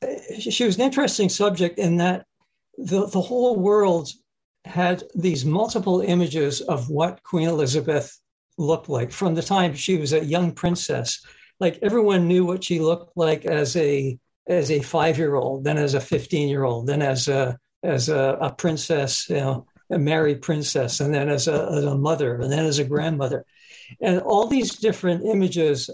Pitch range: 145-185 Hz